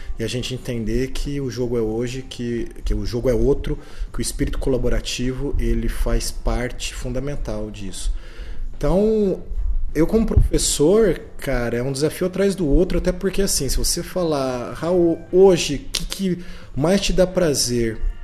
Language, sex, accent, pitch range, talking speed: Portuguese, male, Brazilian, 85-135 Hz, 160 wpm